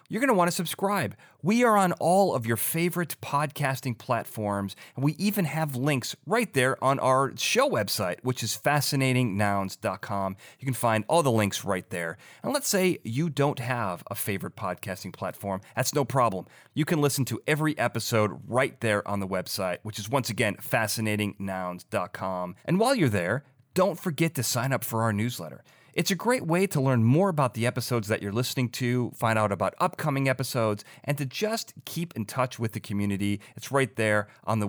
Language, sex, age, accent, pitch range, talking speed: English, male, 30-49, American, 105-145 Hz, 190 wpm